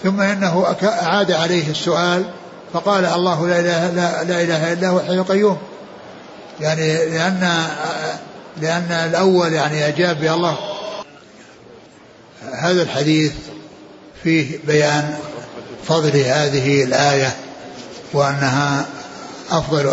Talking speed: 90 wpm